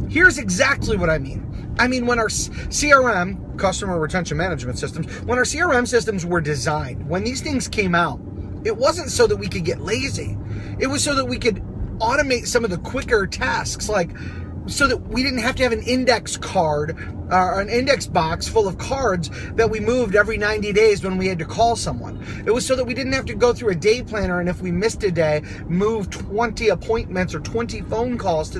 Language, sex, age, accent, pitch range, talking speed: English, male, 30-49, American, 185-255 Hz, 215 wpm